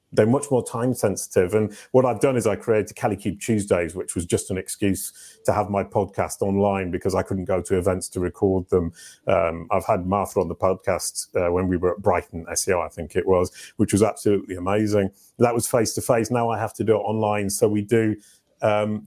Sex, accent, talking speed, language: male, British, 225 wpm, English